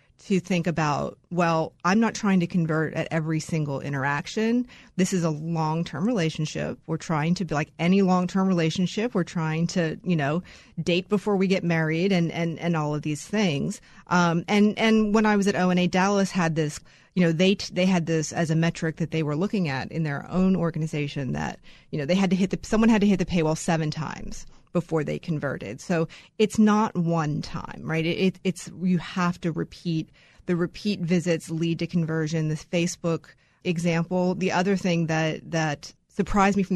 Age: 30-49